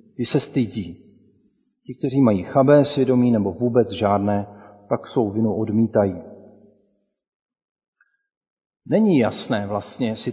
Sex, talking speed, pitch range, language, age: male, 110 wpm, 105-135 Hz, Czech, 40-59